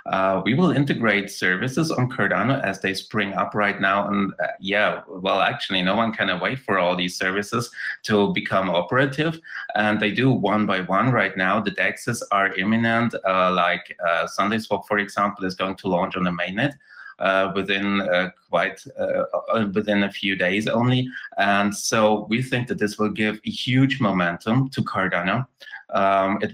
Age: 30-49